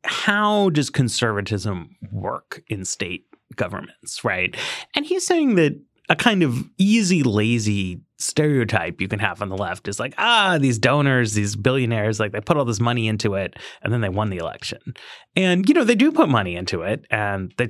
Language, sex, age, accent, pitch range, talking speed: English, male, 30-49, American, 115-185 Hz, 190 wpm